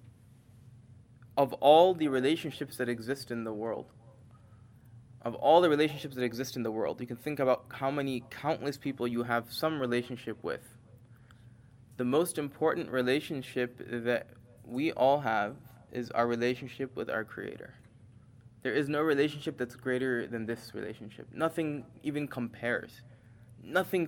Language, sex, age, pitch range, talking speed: English, male, 20-39, 120-155 Hz, 145 wpm